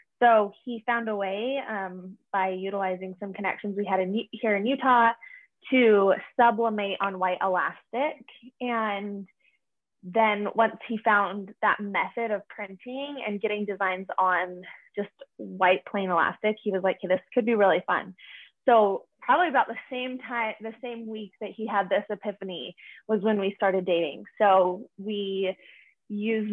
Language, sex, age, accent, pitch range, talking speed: English, female, 20-39, American, 195-230 Hz, 150 wpm